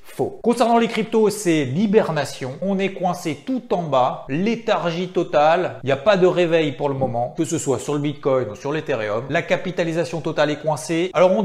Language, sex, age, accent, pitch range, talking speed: French, male, 40-59, French, 130-180 Hz, 205 wpm